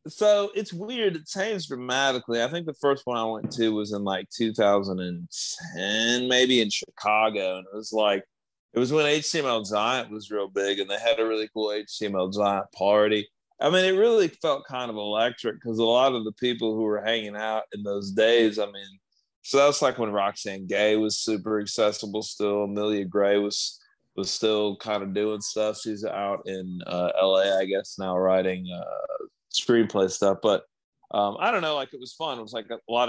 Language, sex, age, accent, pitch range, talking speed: English, male, 30-49, American, 100-120 Hz, 200 wpm